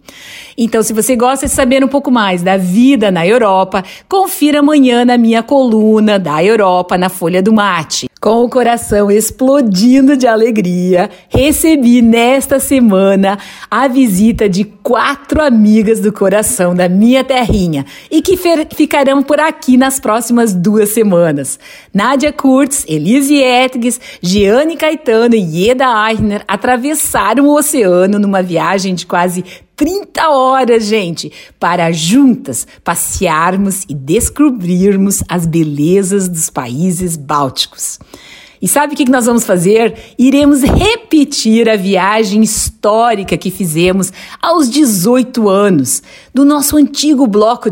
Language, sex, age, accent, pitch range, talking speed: Portuguese, female, 50-69, Brazilian, 195-270 Hz, 130 wpm